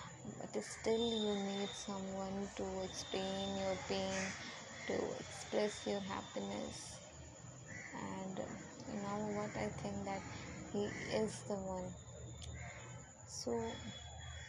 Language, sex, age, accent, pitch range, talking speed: Hindi, female, 20-39, native, 130-210 Hz, 110 wpm